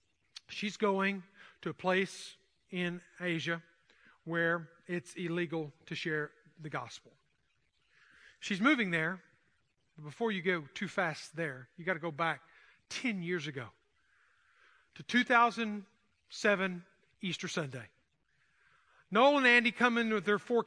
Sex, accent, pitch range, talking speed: male, American, 170-225 Hz, 130 wpm